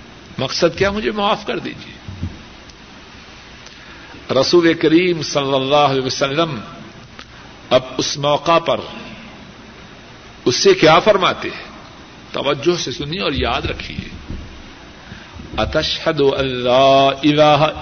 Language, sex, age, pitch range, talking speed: Urdu, male, 60-79, 145-200 Hz, 100 wpm